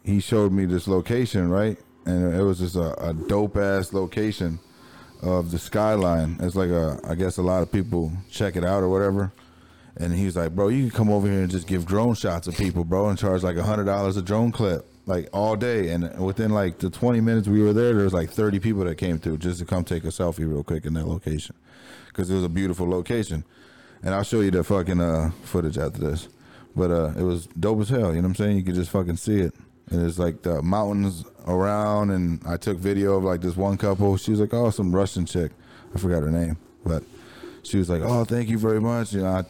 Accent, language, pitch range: American, English, 90-110 Hz